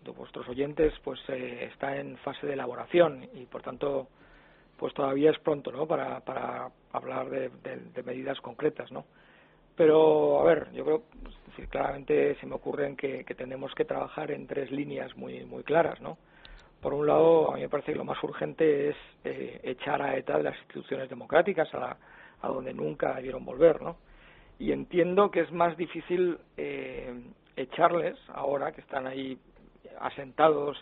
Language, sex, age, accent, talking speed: Spanish, male, 50-69, Spanish, 175 wpm